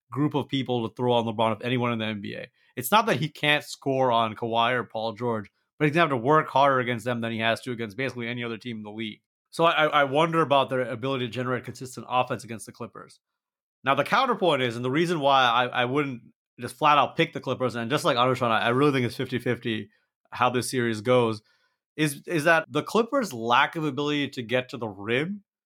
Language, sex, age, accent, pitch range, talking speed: English, male, 30-49, American, 120-150 Hz, 240 wpm